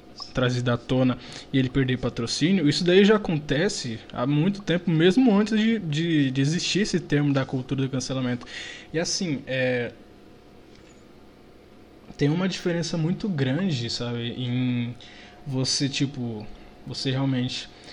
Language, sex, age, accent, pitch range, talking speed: Portuguese, male, 20-39, Brazilian, 125-160 Hz, 135 wpm